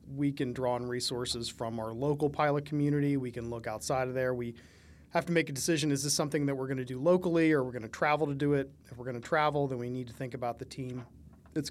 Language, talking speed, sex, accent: English, 270 wpm, male, American